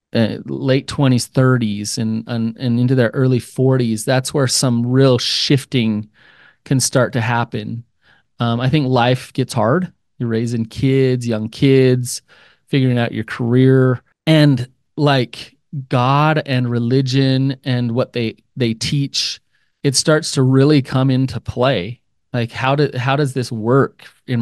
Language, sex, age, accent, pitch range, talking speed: English, male, 30-49, American, 115-135 Hz, 145 wpm